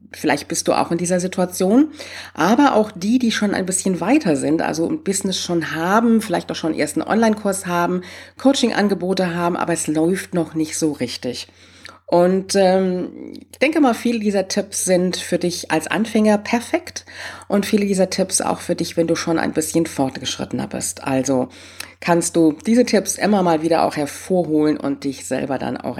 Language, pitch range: German, 135-195 Hz